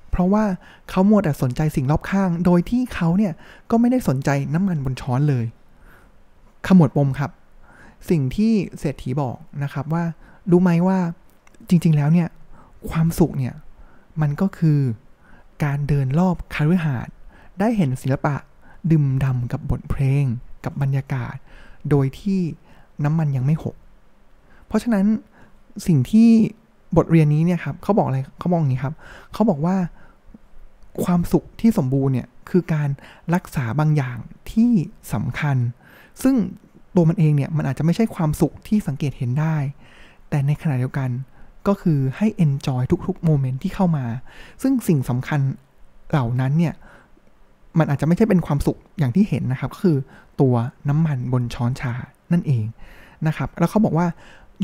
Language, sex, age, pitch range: Thai, male, 20-39, 135-180 Hz